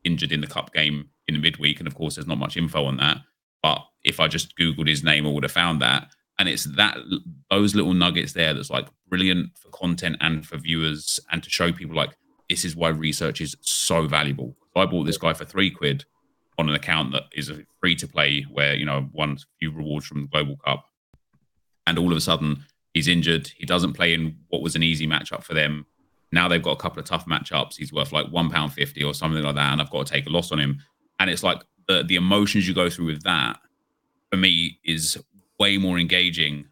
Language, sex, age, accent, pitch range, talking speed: English, male, 30-49, British, 75-85 Hz, 230 wpm